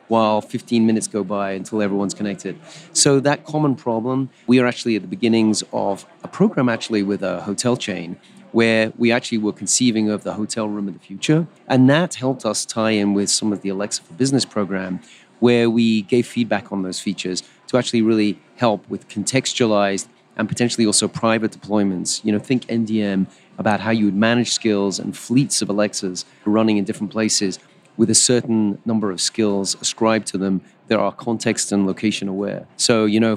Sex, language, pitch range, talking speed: male, English, 100-115 Hz, 190 wpm